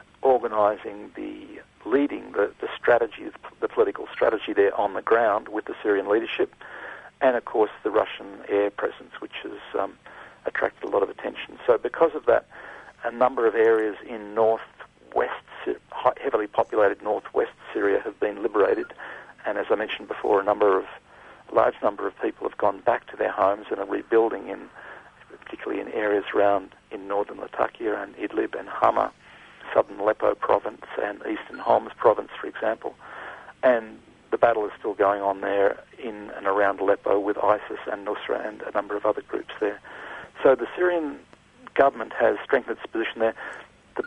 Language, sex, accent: English, male, Australian